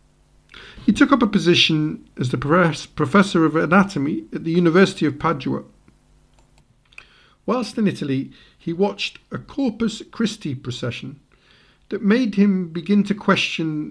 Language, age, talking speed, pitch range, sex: English, 50-69, 130 wpm, 130-170 Hz, male